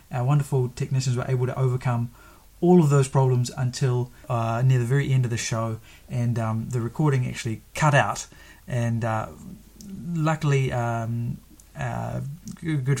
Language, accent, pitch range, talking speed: English, Australian, 120-145 Hz, 150 wpm